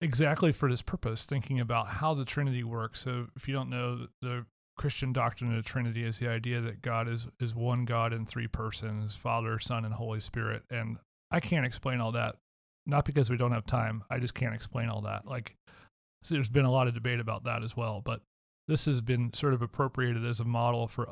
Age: 30-49